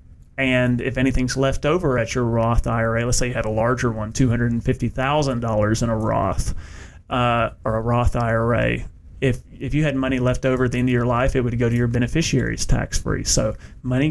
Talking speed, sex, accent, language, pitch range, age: 200 wpm, male, American, English, 120-130 Hz, 30-49